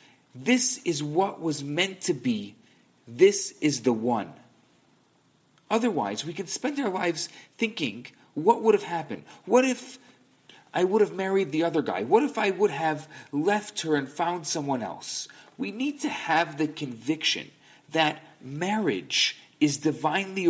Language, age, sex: English, 40-59, male